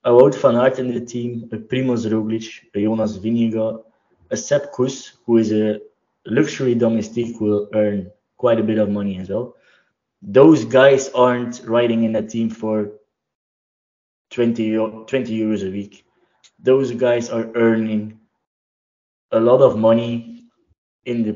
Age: 20-39